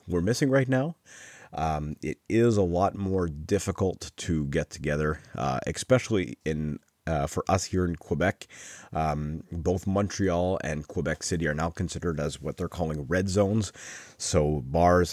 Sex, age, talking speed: male, 30-49, 160 wpm